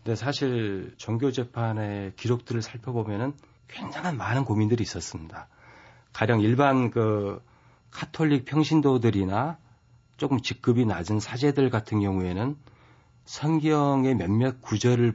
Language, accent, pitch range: Korean, native, 105-140 Hz